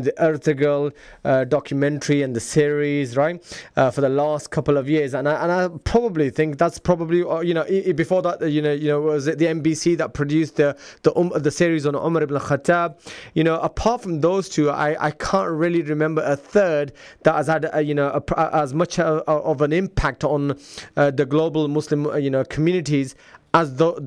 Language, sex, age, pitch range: English, male, 20-39, 145-175 Hz